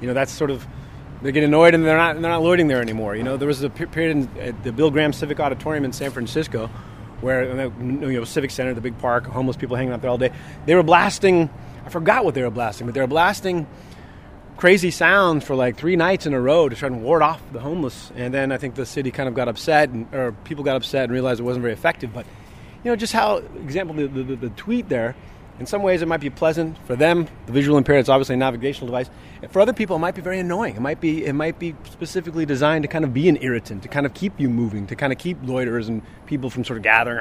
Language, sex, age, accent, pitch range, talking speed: English, male, 30-49, American, 120-155 Hz, 265 wpm